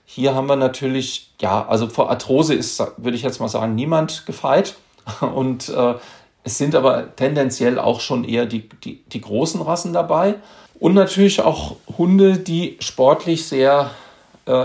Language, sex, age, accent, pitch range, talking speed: German, male, 40-59, German, 115-140 Hz, 155 wpm